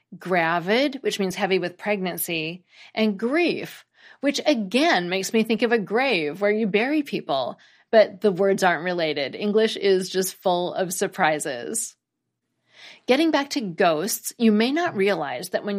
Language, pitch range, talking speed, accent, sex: English, 180-235 Hz, 155 wpm, American, female